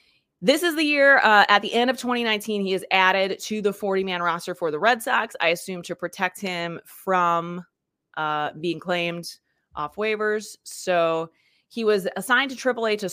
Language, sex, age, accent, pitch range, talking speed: English, female, 20-39, American, 175-220 Hz, 180 wpm